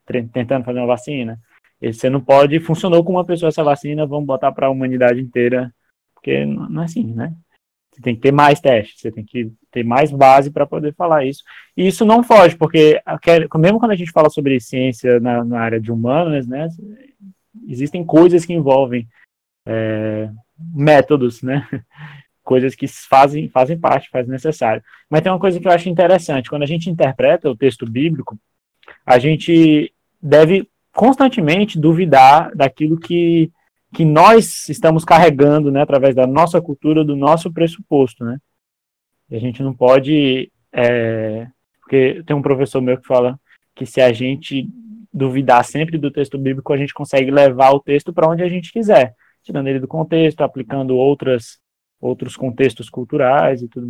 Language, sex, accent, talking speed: Portuguese, male, Brazilian, 170 wpm